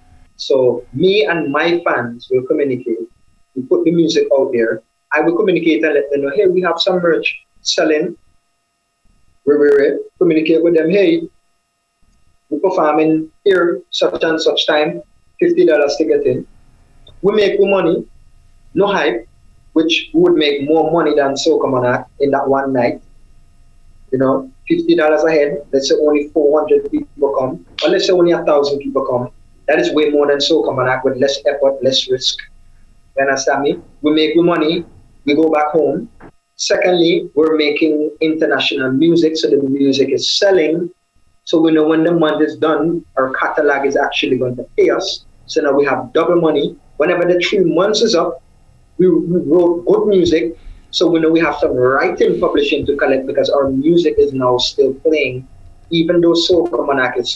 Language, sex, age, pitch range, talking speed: English, male, 30-49, 135-175 Hz, 175 wpm